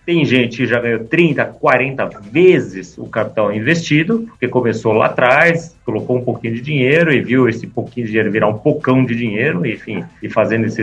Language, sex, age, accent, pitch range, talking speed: Portuguese, male, 40-59, Brazilian, 110-145 Hz, 195 wpm